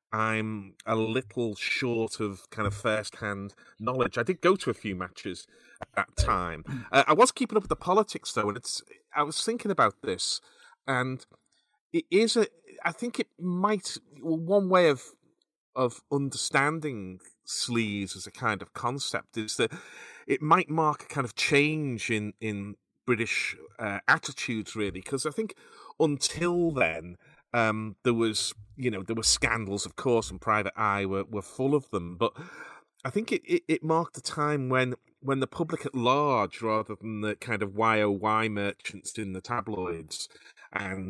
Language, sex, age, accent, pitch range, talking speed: English, male, 30-49, British, 105-145 Hz, 175 wpm